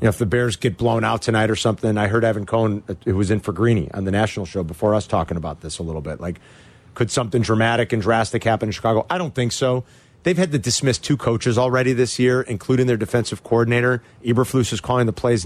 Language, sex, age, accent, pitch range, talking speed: English, male, 40-59, American, 105-125 Hz, 235 wpm